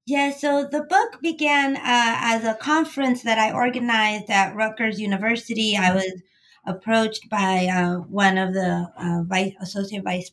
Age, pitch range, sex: 30-49, 190-220 Hz, female